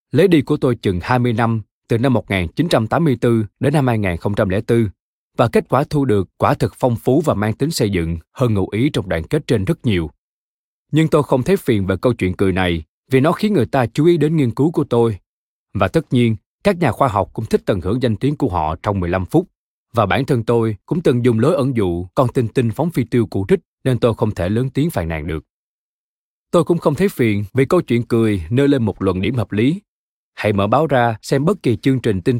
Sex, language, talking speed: male, Vietnamese, 240 wpm